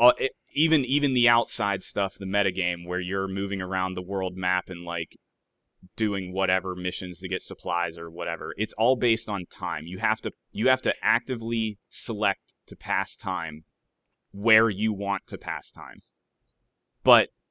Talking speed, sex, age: 170 wpm, male, 20-39